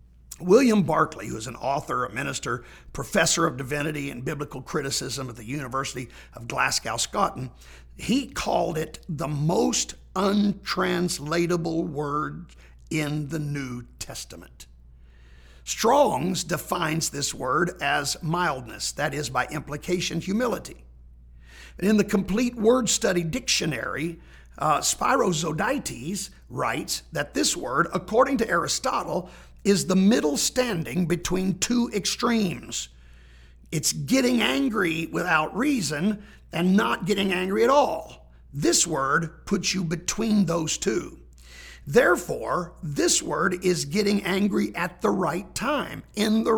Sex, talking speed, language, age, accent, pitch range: male, 120 wpm, English, 50-69, American, 145-205 Hz